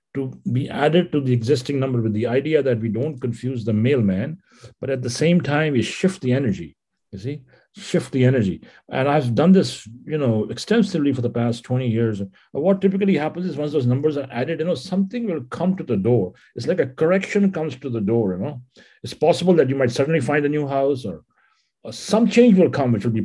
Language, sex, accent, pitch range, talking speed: English, male, Indian, 110-150 Hz, 230 wpm